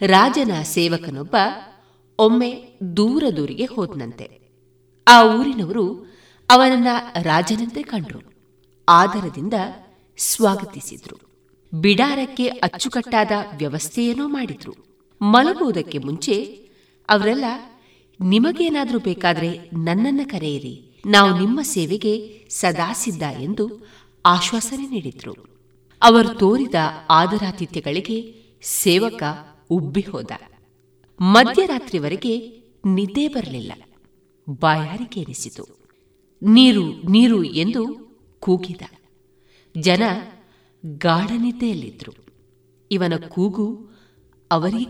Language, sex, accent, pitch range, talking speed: Kannada, female, native, 165-235 Hz, 65 wpm